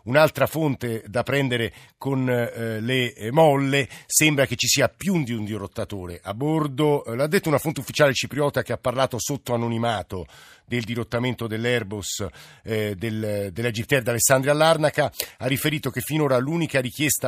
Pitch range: 105-130 Hz